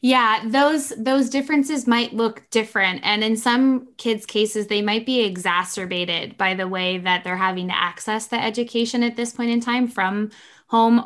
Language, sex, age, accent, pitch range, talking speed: English, female, 10-29, American, 195-235 Hz, 180 wpm